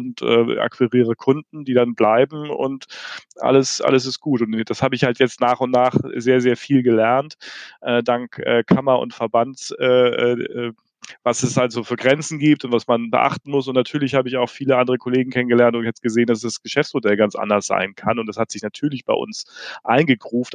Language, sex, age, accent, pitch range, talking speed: German, male, 30-49, German, 120-140 Hz, 205 wpm